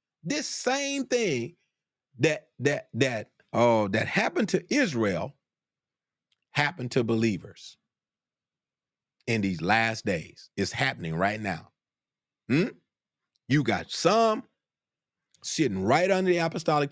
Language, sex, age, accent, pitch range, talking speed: English, male, 40-59, American, 115-185 Hz, 110 wpm